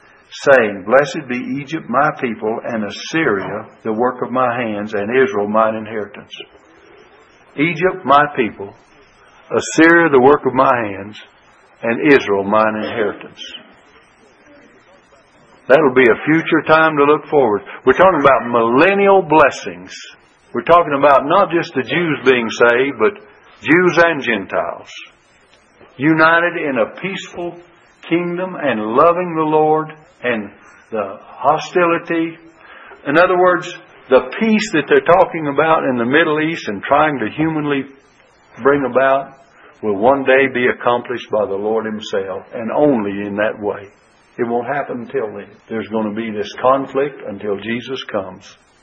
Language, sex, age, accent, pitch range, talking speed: English, male, 60-79, American, 120-165 Hz, 145 wpm